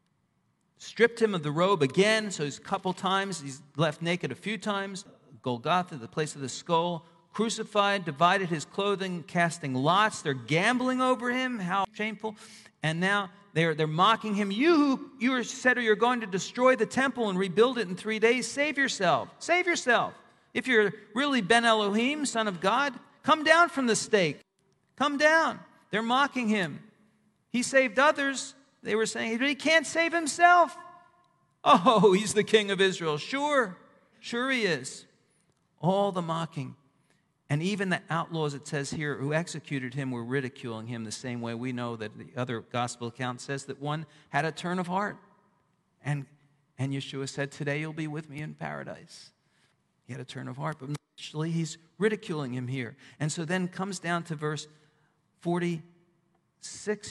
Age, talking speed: 40-59, 175 wpm